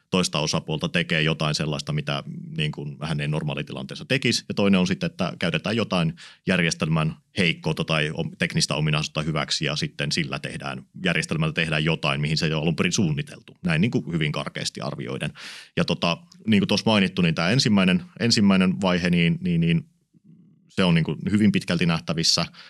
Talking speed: 170 wpm